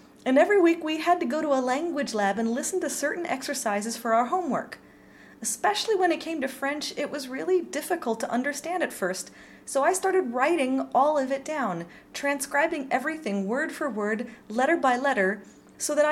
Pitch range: 240-315 Hz